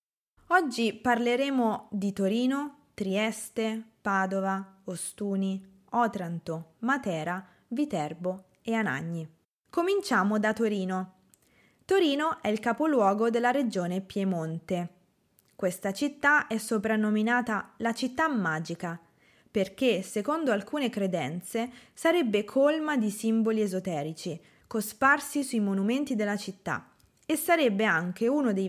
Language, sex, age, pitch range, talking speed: Italian, female, 20-39, 190-255 Hz, 100 wpm